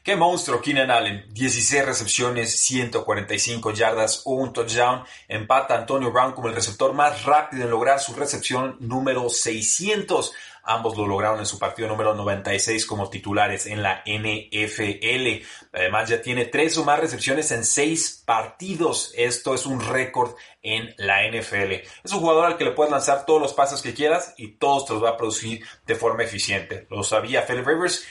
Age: 30-49